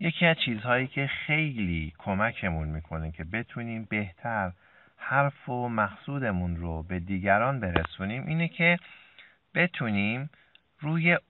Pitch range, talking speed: 90-140 Hz, 110 wpm